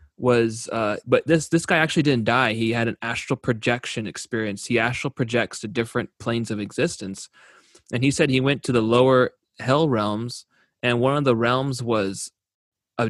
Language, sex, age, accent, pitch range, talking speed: English, male, 20-39, American, 115-140 Hz, 185 wpm